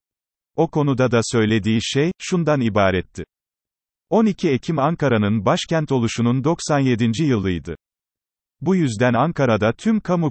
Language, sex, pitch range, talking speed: Turkish, male, 110-145 Hz, 110 wpm